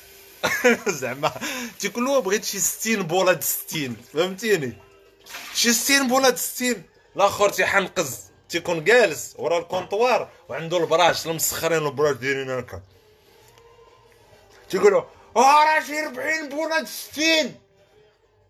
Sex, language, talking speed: male, Arabic, 80 wpm